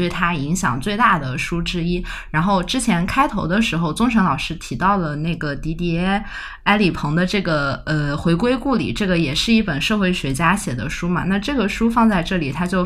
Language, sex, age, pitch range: Chinese, female, 20-39, 160-215 Hz